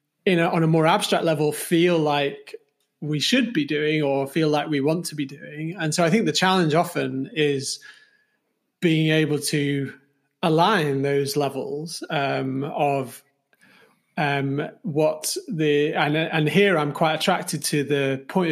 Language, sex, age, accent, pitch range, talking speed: English, male, 30-49, British, 140-170 Hz, 150 wpm